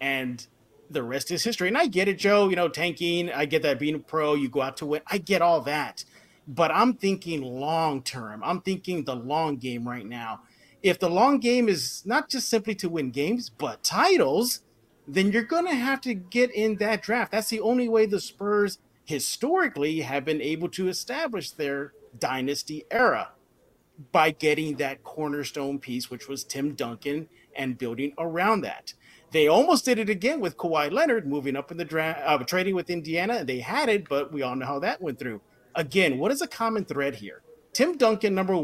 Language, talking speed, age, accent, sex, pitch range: English, 200 wpm, 30-49, American, male, 145-215 Hz